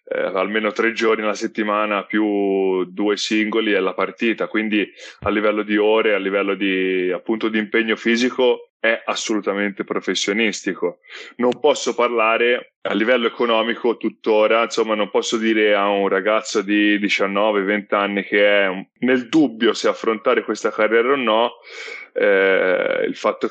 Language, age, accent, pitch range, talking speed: Italian, 20-39, native, 100-120 Hz, 145 wpm